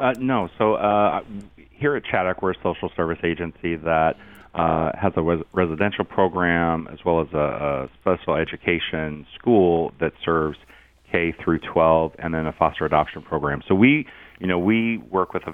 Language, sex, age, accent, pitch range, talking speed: English, male, 40-59, American, 85-95 Hz, 180 wpm